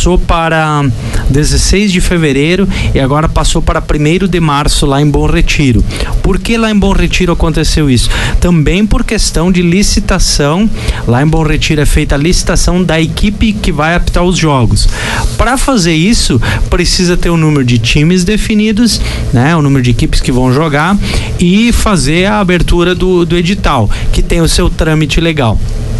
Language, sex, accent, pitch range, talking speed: Portuguese, male, Brazilian, 135-185 Hz, 175 wpm